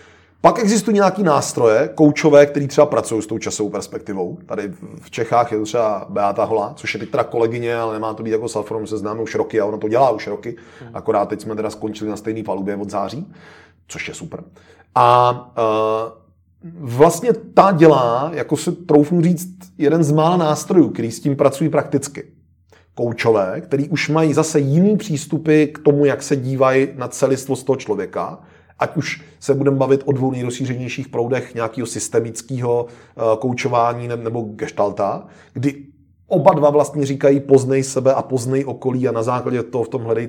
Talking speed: 175 wpm